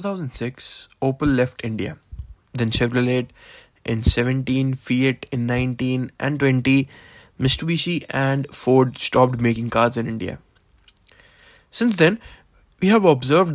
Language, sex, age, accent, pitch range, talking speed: English, male, 20-39, Indian, 120-155 Hz, 115 wpm